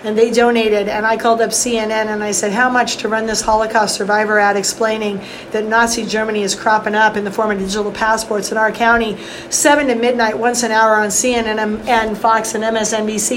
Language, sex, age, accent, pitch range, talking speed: English, female, 40-59, American, 215-245 Hz, 210 wpm